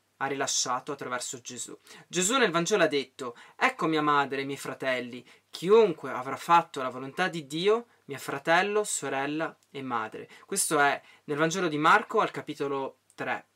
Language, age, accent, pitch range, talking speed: Italian, 20-39, native, 140-210 Hz, 160 wpm